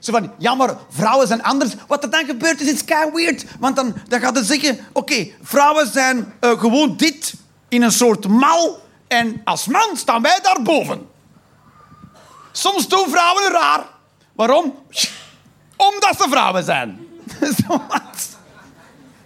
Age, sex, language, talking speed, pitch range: 40-59, male, Dutch, 135 wpm, 235-310 Hz